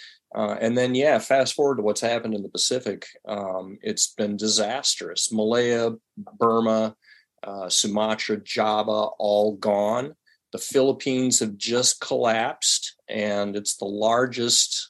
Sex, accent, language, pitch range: male, American, English, 105-125 Hz